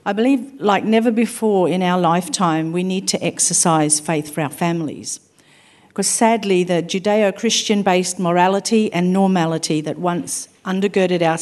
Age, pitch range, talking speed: 50-69, 170-200 Hz, 140 wpm